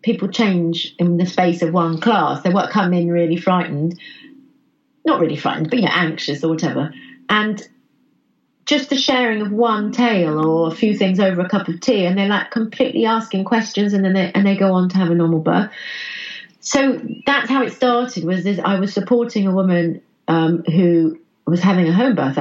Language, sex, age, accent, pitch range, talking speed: English, female, 40-59, British, 160-200 Hz, 205 wpm